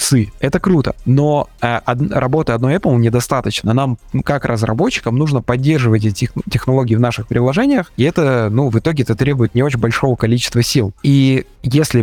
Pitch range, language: 110-140 Hz, Russian